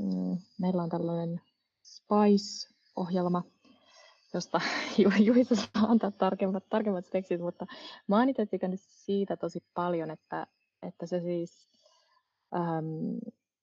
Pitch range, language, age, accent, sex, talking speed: 175-215 Hz, Finnish, 20-39, native, female, 95 wpm